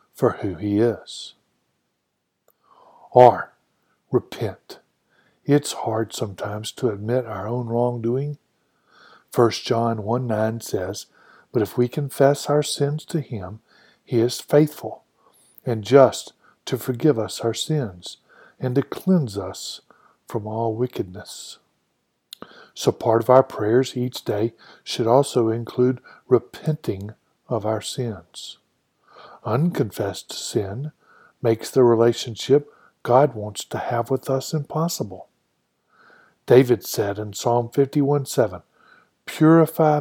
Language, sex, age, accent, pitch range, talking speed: English, male, 50-69, American, 110-140 Hz, 115 wpm